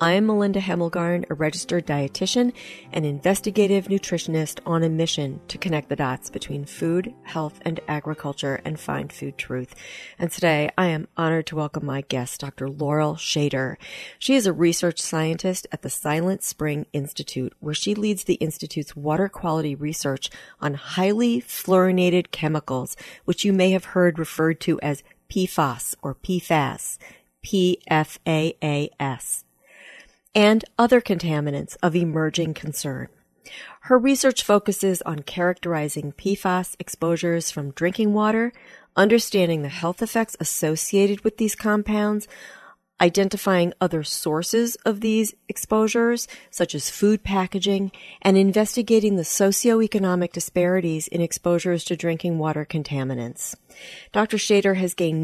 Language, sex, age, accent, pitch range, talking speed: English, female, 40-59, American, 155-195 Hz, 130 wpm